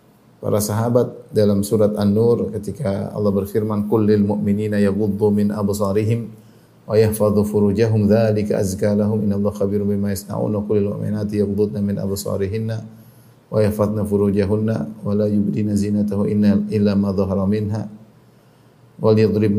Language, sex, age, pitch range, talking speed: Indonesian, male, 30-49, 105-110 Hz, 45 wpm